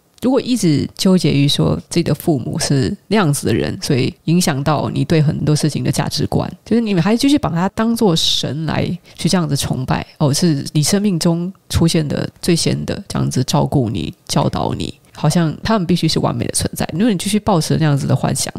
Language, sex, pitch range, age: Chinese, female, 150-185 Hz, 20-39